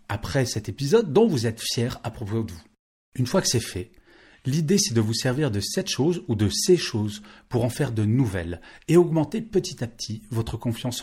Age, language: 40-59, French